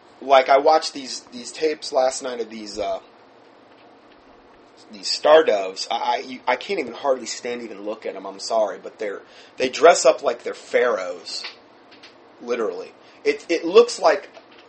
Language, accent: English, American